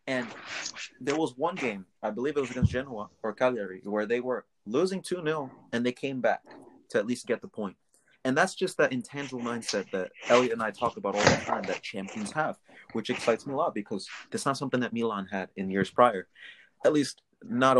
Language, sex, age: English, male, 30-49